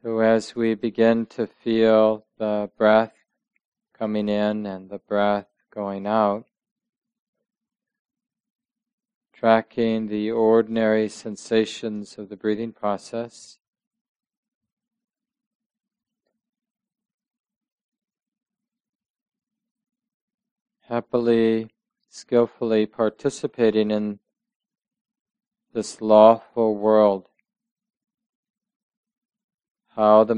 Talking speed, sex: 65 wpm, male